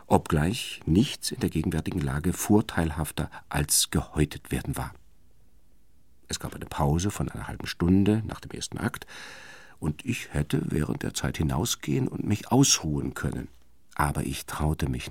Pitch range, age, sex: 70-95 Hz, 50-69, male